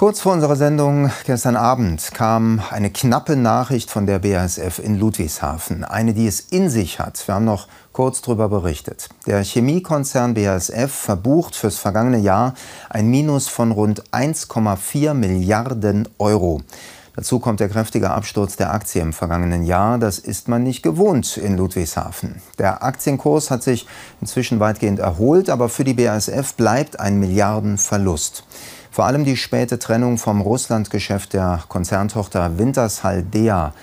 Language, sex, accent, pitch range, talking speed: German, male, German, 95-120 Hz, 145 wpm